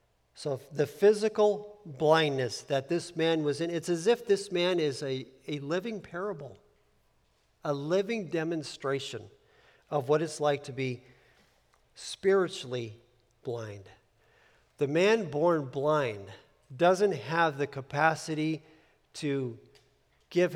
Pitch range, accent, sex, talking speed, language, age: 140-185 Hz, American, male, 115 wpm, English, 50-69